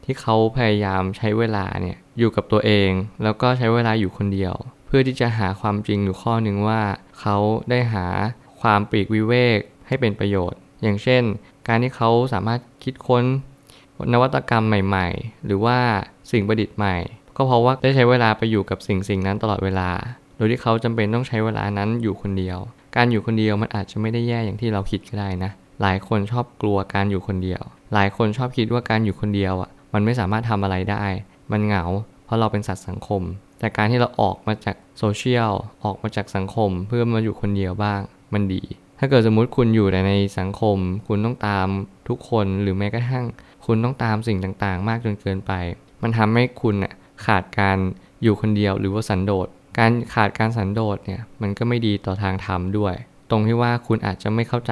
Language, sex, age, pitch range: Thai, male, 20-39, 100-115 Hz